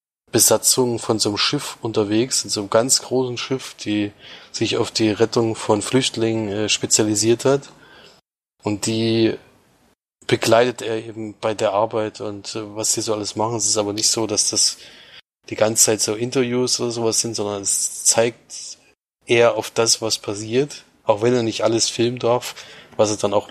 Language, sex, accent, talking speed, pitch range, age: German, male, German, 180 wpm, 105-115 Hz, 20-39